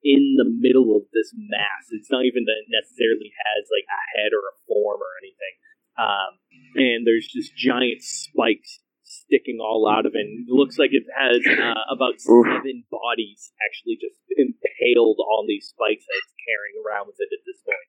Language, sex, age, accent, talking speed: English, male, 30-49, American, 190 wpm